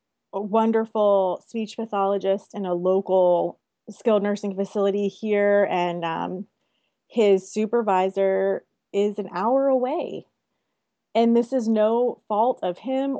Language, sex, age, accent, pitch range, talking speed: English, female, 30-49, American, 190-220 Hz, 120 wpm